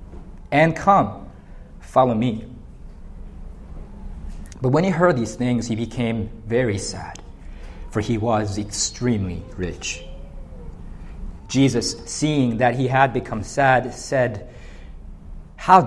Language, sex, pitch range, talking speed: English, male, 95-140 Hz, 105 wpm